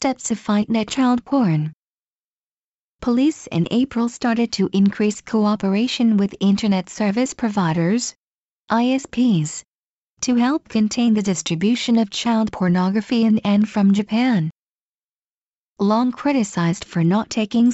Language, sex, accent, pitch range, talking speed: English, female, American, 190-235 Hz, 115 wpm